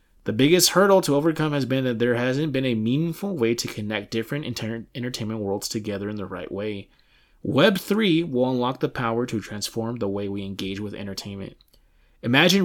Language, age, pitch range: English, 20-39, 110-165 Hz